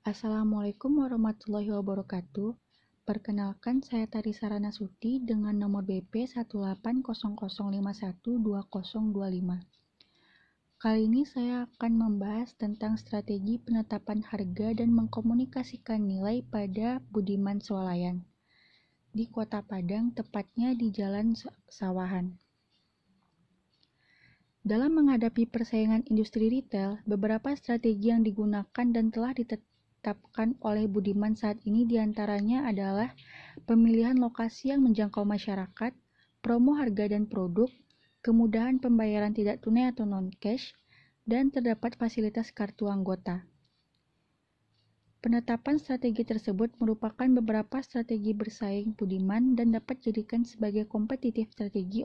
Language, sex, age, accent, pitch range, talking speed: Indonesian, female, 20-39, native, 205-235 Hz, 100 wpm